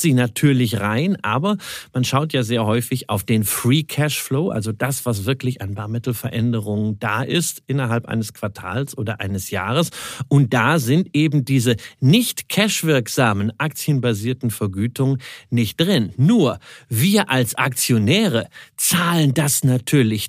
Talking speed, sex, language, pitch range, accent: 135 wpm, male, German, 115-145 Hz, German